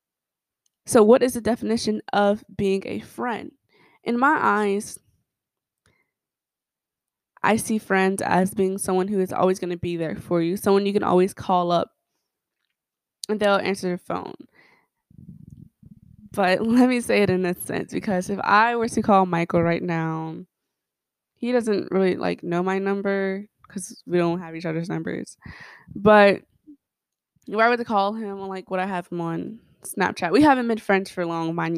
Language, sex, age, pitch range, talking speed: English, female, 20-39, 175-220 Hz, 170 wpm